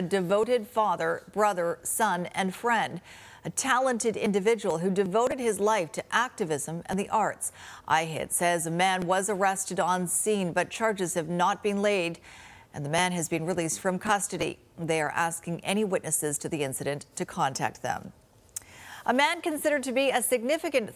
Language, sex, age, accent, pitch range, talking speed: English, female, 40-59, American, 175-230 Hz, 170 wpm